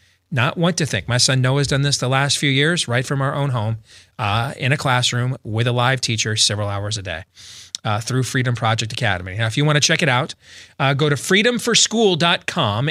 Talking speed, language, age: 220 wpm, English, 30-49